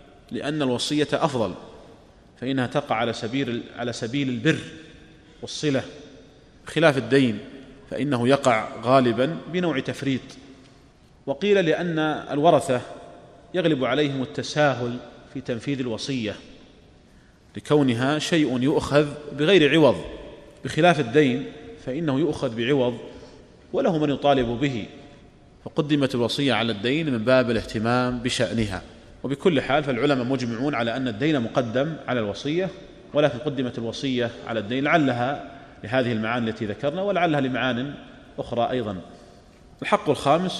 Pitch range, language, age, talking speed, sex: 120-145 Hz, Arabic, 30-49, 110 wpm, male